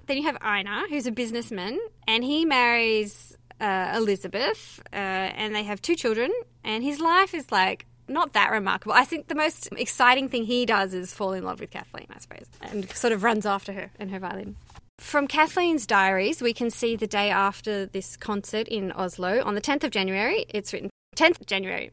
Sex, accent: female, Australian